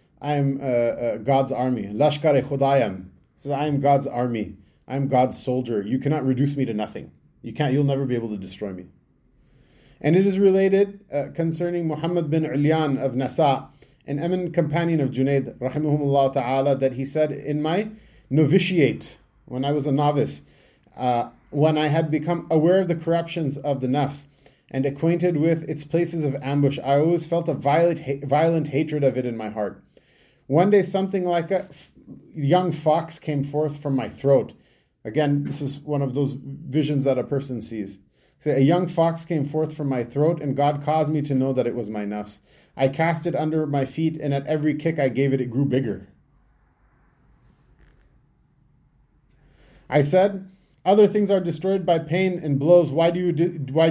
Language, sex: English, male